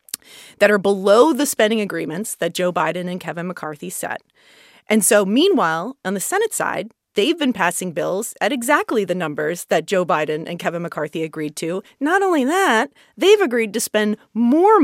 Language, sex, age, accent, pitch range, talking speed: English, female, 30-49, American, 170-230 Hz, 180 wpm